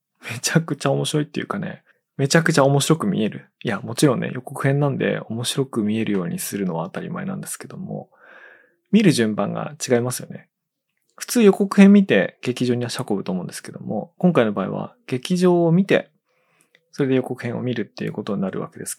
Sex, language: male, Japanese